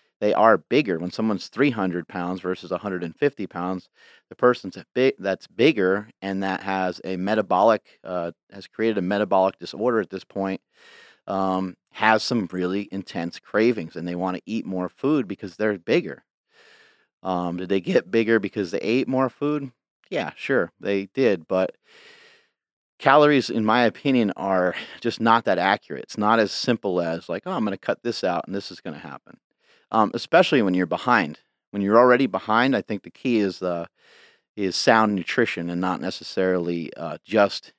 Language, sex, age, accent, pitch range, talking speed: English, male, 30-49, American, 90-115 Hz, 175 wpm